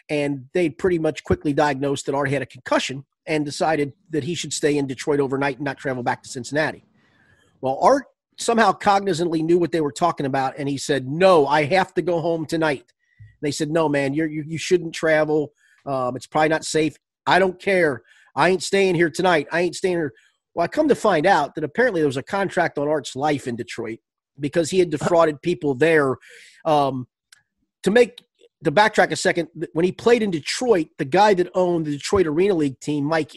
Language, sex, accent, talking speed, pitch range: English, male, American, 210 wpm, 145-180 Hz